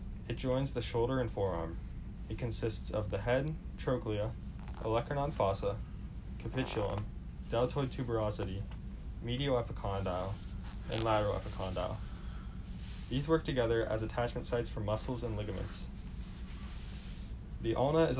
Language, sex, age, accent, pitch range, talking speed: English, male, 10-29, American, 100-120 Hz, 115 wpm